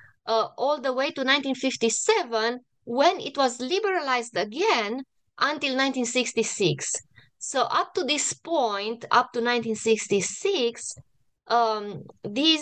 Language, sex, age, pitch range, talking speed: English, female, 20-39, 215-255 Hz, 100 wpm